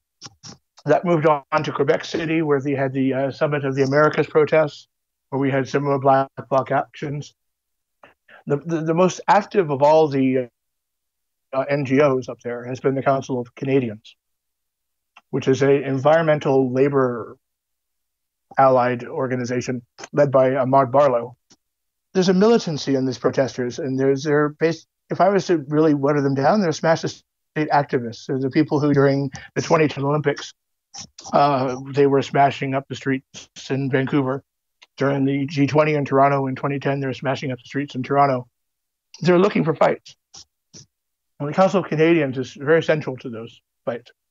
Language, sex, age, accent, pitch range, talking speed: English, male, 60-79, American, 130-150 Hz, 165 wpm